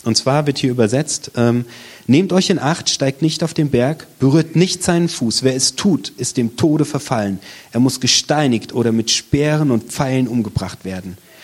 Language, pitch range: German, 115-155 Hz